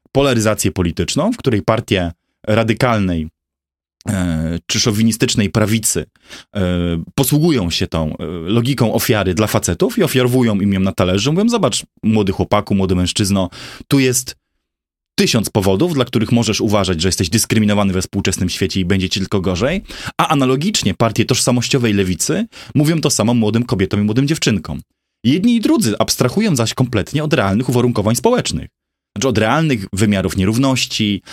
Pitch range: 100-130 Hz